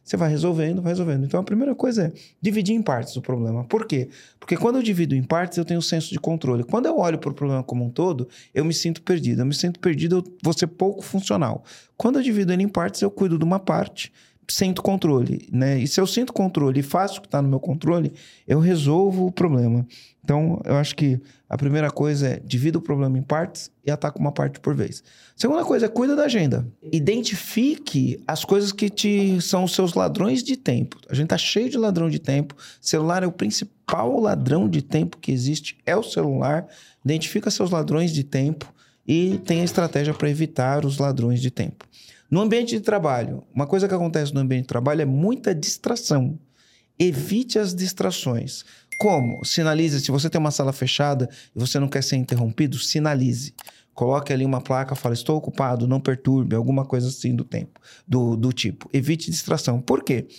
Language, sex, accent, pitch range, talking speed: Portuguese, male, Brazilian, 135-190 Hz, 205 wpm